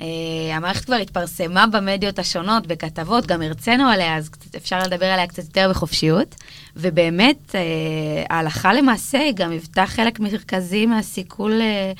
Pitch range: 175-210 Hz